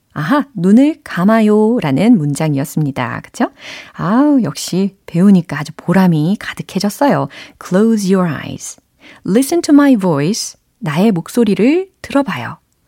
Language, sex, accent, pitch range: Korean, female, native, 165-240 Hz